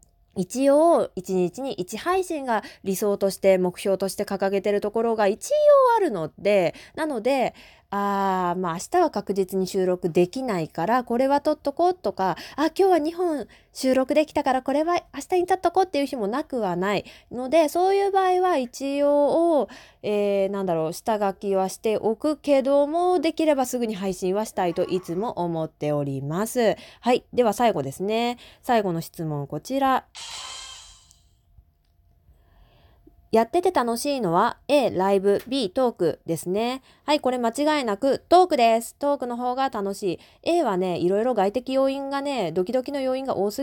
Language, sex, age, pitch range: Japanese, female, 20-39, 195-290 Hz